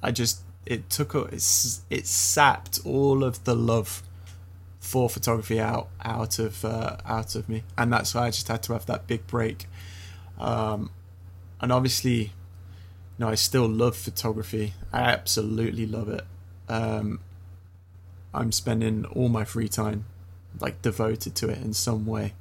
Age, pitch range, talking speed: 20-39, 90-115 Hz, 160 wpm